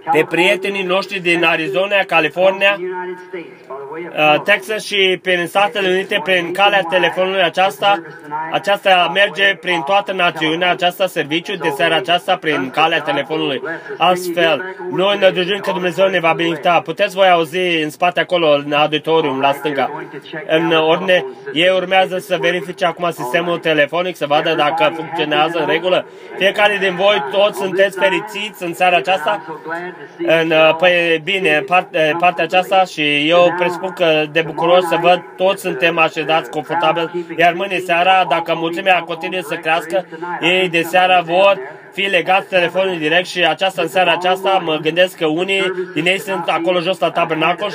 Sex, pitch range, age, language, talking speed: male, 165-190 Hz, 20-39, Romanian, 150 wpm